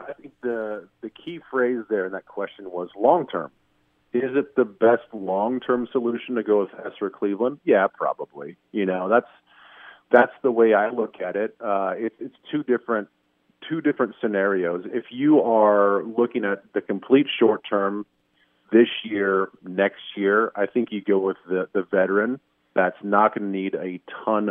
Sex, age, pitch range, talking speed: male, 40-59, 95-125 Hz, 170 wpm